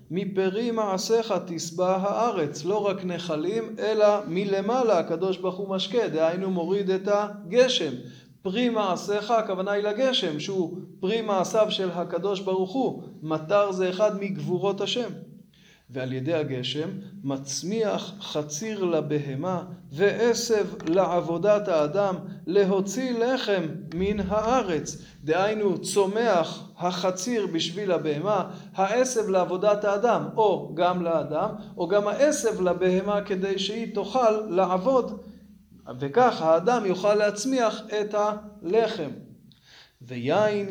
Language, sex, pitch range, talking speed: Hebrew, male, 175-210 Hz, 110 wpm